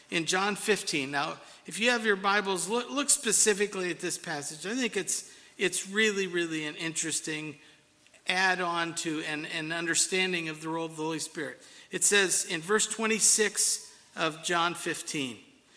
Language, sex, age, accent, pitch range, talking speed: English, male, 50-69, American, 180-235 Hz, 165 wpm